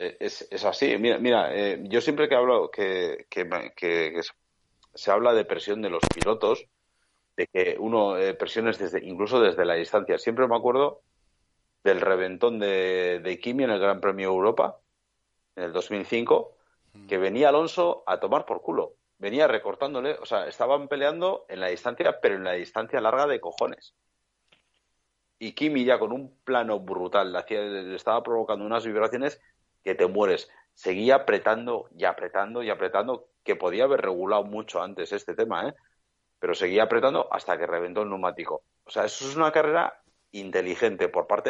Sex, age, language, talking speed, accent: male, 40-59, Spanish, 170 wpm, Spanish